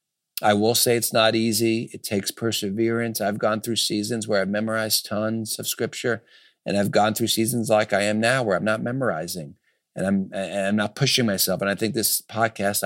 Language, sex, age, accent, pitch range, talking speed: English, male, 50-69, American, 100-120 Hz, 205 wpm